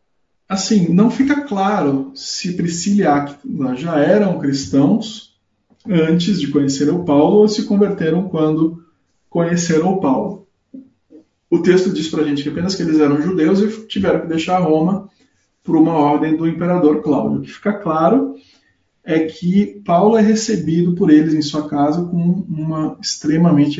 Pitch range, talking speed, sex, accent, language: 145-190 Hz, 155 wpm, male, Brazilian, Portuguese